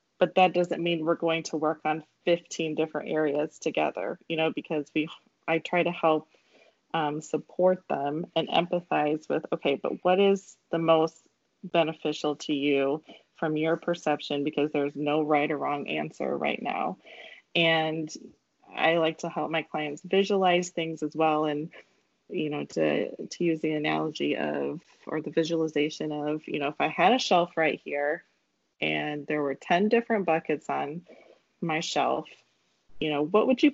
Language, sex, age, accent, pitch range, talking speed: English, female, 20-39, American, 150-170 Hz, 170 wpm